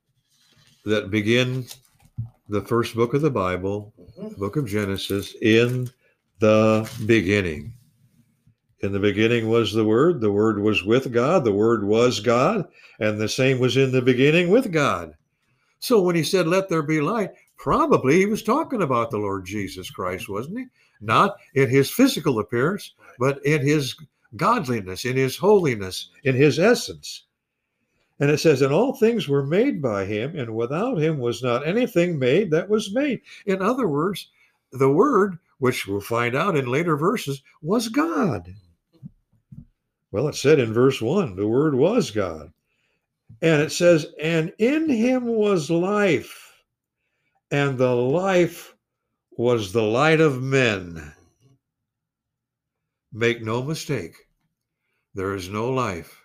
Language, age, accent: English, 60-79, American